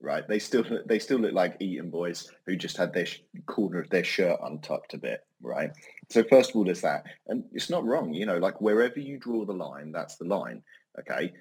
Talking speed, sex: 225 wpm, male